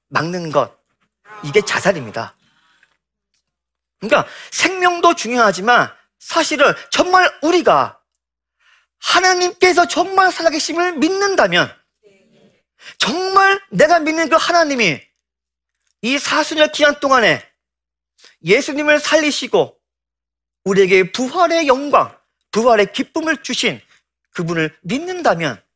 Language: Korean